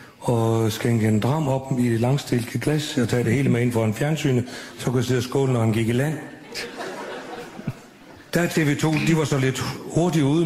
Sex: male